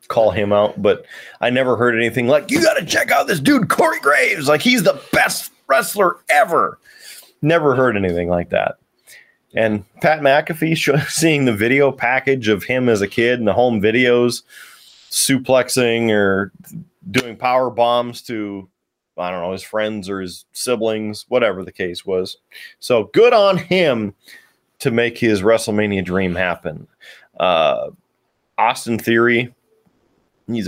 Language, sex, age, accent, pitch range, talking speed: English, male, 30-49, American, 105-135 Hz, 150 wpm